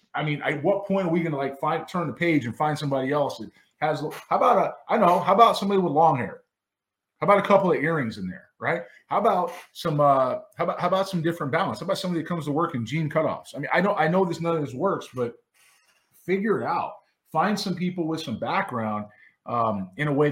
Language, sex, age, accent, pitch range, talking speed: English, male, 20-39, American, 135-185 Hz, 250 wpm